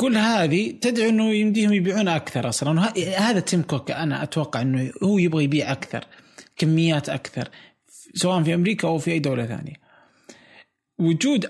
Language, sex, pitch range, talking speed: Arabic, male, 140-180 Hz, 150 wpm